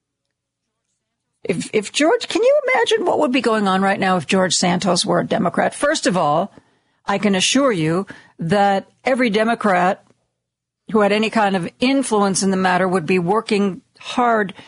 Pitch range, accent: 185-230 Hz, American